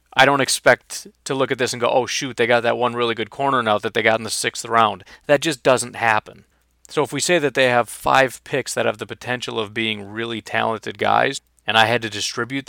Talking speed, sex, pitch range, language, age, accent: 250 wpm, male, 110-135 Hz, English, 30-49, American